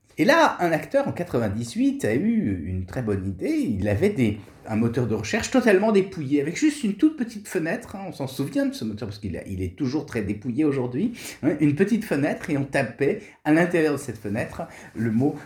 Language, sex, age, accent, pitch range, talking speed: French, male, 50-69, French, 115-165 Hz, 220 wpm